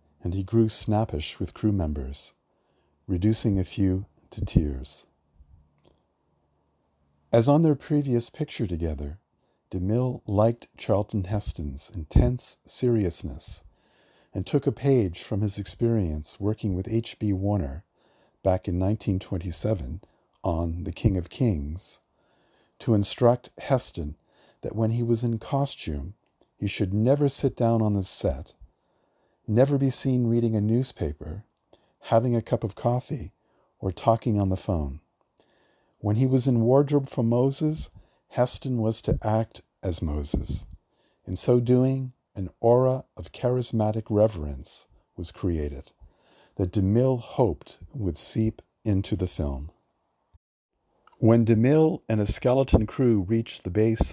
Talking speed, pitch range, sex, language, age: 130 wpm, 90-120 Hz, male, English, 50-69